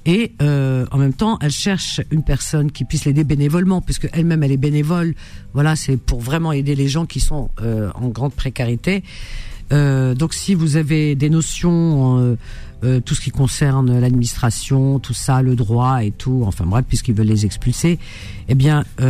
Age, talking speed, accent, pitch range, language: 50-69, 190 wpm, French, 120-165 Hz, French